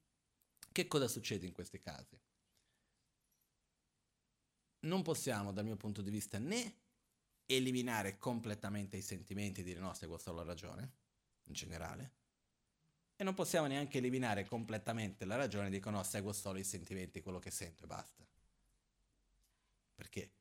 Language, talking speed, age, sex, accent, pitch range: Italian, 140 wpm, 30-49, male, native, 95-125 Hz